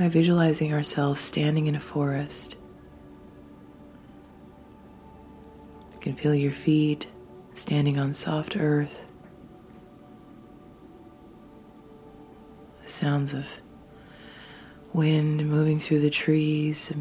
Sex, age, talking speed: female, 30-49, 90 wpm